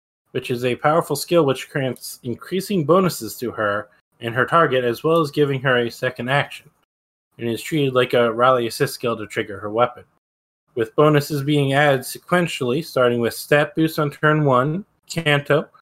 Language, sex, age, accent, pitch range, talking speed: English, male, 20-39, American, 120-145 Hz, 180 wpm